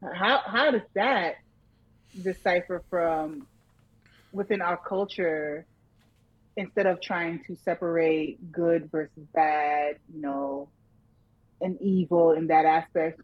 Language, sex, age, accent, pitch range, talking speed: English, female, 30-49, American, 150-185 Hz, 110 wpm